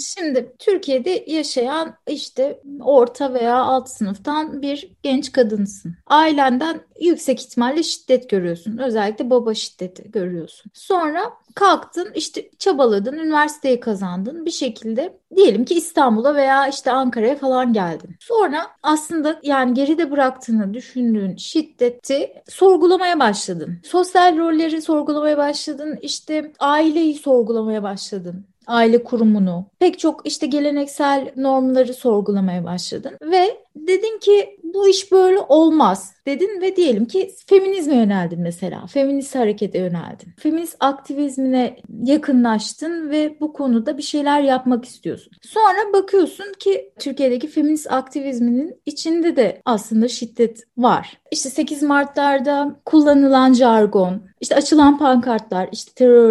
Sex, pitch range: female, 230-320 Hz